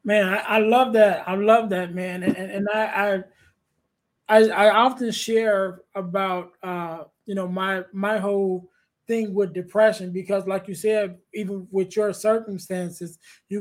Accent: American